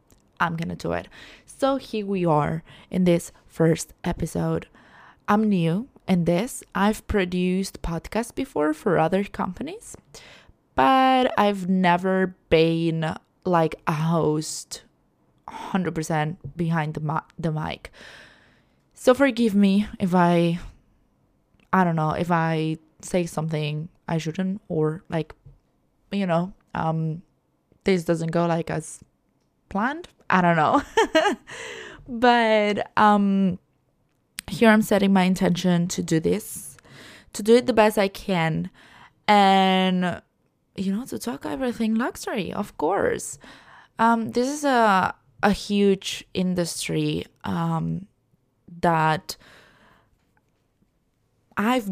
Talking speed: 115 wpm